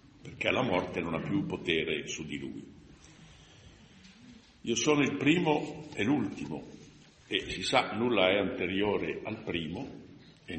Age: 60-79